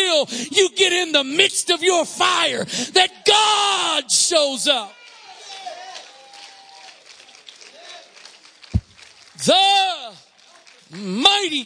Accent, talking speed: American, 70 wpm